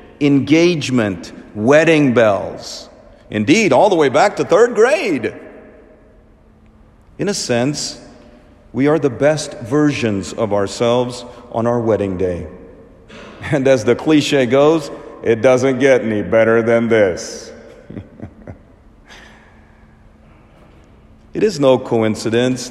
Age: 50-69